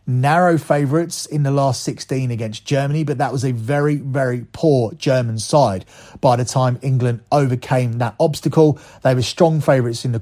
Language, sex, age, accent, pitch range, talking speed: English, male, 30-49, British, 120-150 Hz, 175 wpm